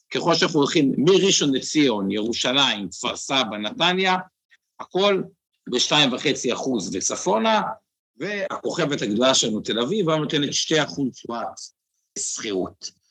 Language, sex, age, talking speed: Hebrew, male, 60-79, 95 wpm